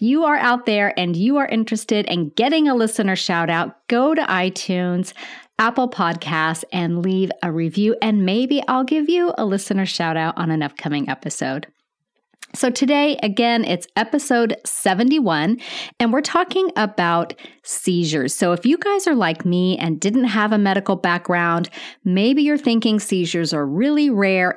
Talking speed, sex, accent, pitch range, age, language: 165 wpm, female, American, 175-245 Hz, 40-59, English